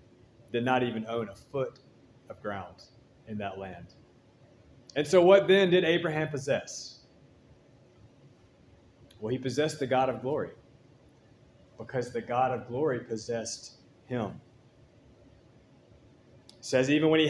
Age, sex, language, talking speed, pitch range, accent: 30-49, male, English, 130 wpm, 115-150 Hz, American